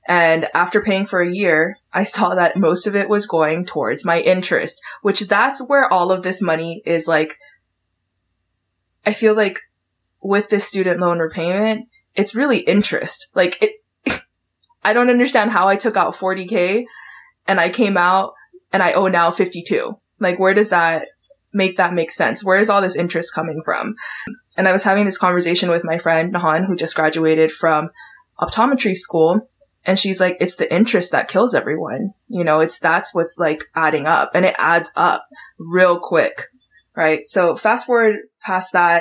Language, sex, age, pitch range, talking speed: English, female, 20-39, 165-200 Hz, 180 wpm